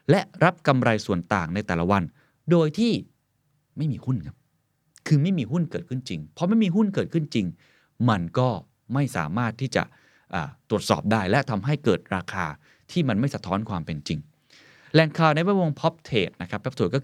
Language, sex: Thai, male